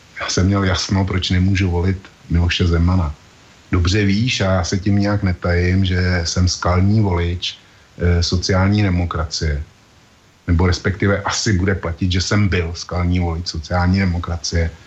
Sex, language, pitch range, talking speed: male, Slovak, 85-100 Hz, 145 wpm